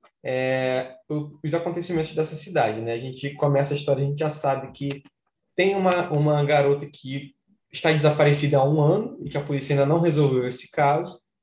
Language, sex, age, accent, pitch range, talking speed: Portuguese, male, 10-29, Brazilian, 135-160 Hz, 185 wpm